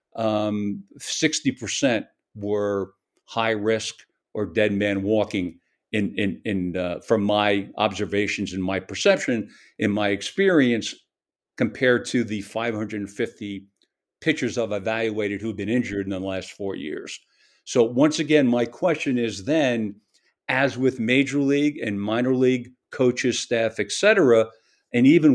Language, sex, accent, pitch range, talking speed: English, male, American, 105-140 Hz, 135 wpm